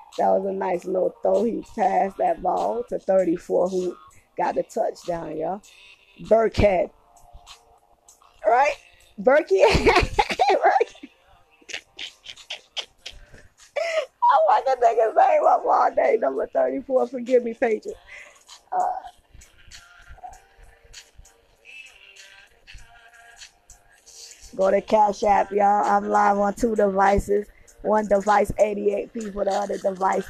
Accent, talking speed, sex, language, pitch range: American, 110 wpm, female, English, 195-265 Hz